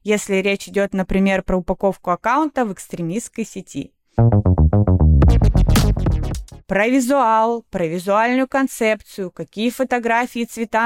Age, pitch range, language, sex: 20-39, 175-235 Hz, Russian, female